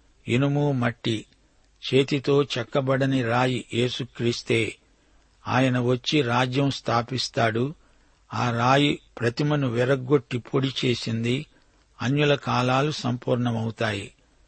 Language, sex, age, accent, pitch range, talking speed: Telugu, male, 60-79, native, 120-140 Hz, 80 wpm